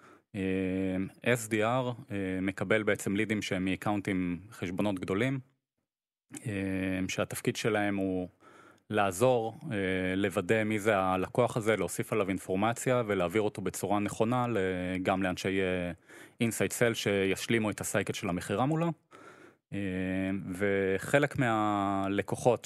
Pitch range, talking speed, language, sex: 95-115 Hz, 110 wpm, Hebrew, male